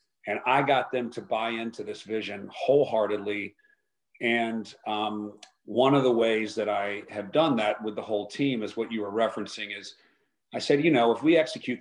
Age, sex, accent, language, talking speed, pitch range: 40-59, male, American, English, 195 wpm, 105-120 Hz